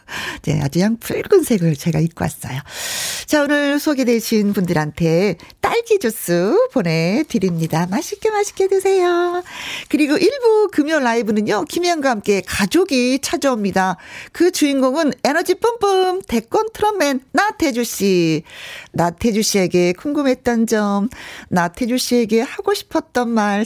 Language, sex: Korean, female